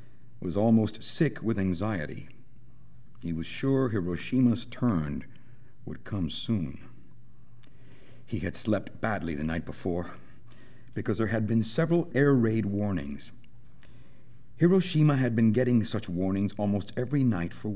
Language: English